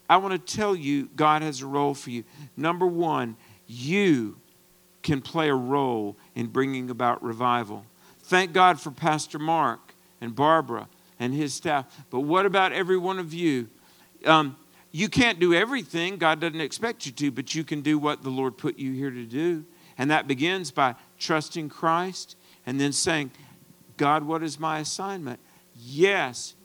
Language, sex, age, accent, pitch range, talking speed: English, male, 50-69, American, 135-180 Hz, 170 wpm